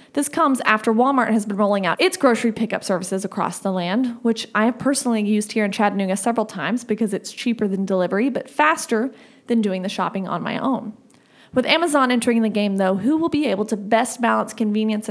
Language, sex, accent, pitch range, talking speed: English, female, American, 210-250 Hz, 210 wpm